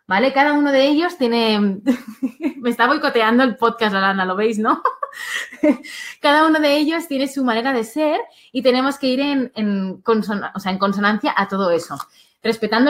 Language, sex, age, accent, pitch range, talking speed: Spanish, female, 20-39, Spanish, 200-270 Hz, 185 wpm